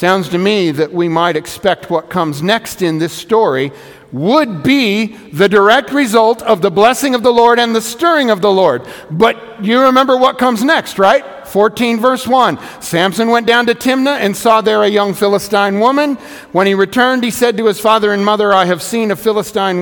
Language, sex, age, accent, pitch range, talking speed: English, male, 50-69, American, 160-225 Hz, 205 wpm